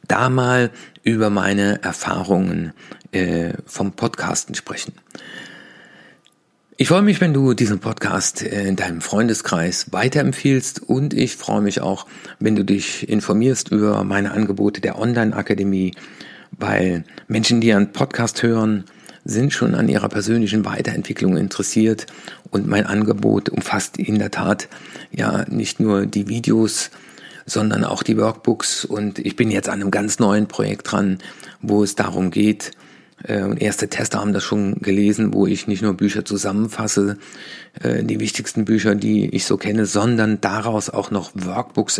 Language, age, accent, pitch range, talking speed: German, 50-69, German, 100-115 Hz, 145 wpm